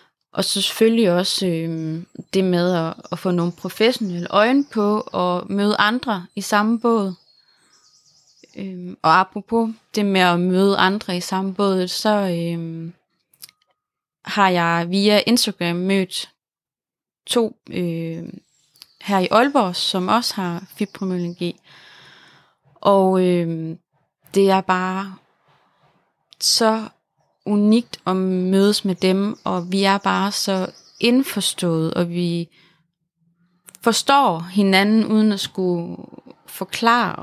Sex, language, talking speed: female, Danish, 110 wpm